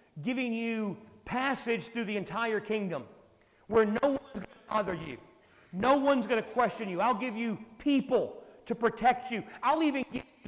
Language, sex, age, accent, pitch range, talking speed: English, male, 40-59, American, 190-255 Hz, 180 wpm